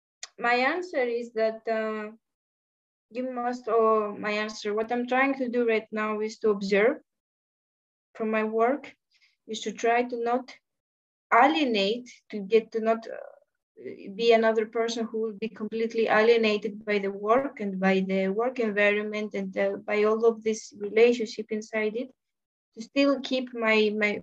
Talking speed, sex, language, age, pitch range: 160 wpm, female, English, 20-39, 210-245 Hz